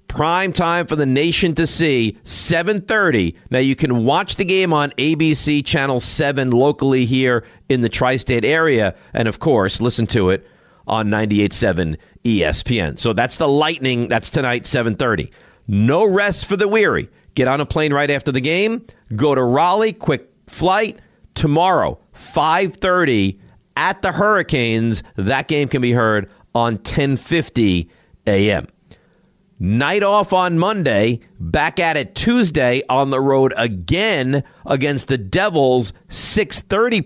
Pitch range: 110-155 Hz